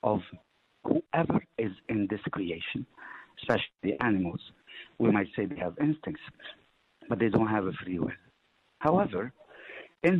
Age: 60-79